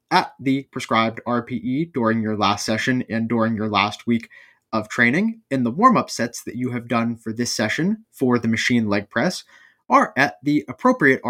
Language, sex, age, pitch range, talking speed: English, male, 20-39, 120-165 Hz, 185 wpm